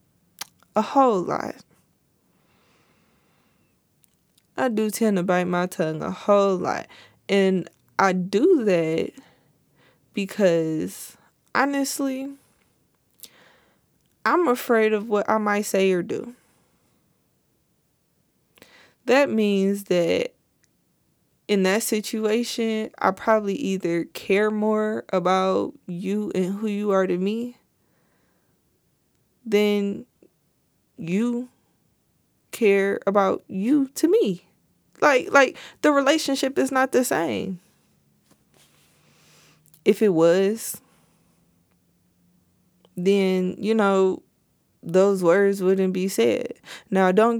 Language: English